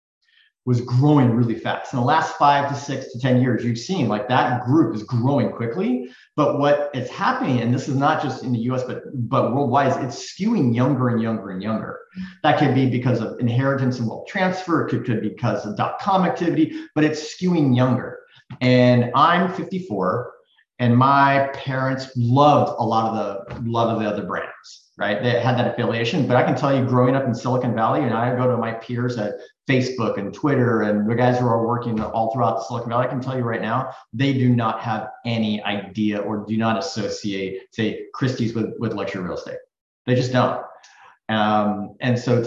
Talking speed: 205 wpm